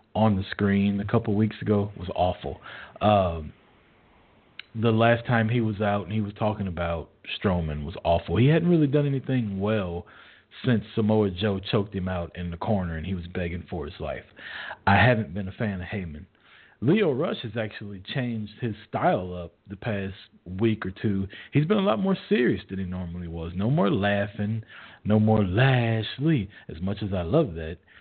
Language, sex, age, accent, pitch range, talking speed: English, male, 40-59, American, 90-110 Hz, 190 wpm